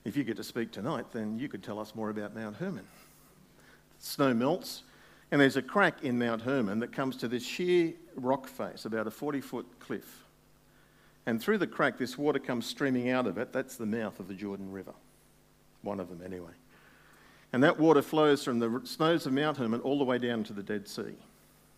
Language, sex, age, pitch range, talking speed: English, male, 50-69, 105-135 Hz, 205 wpm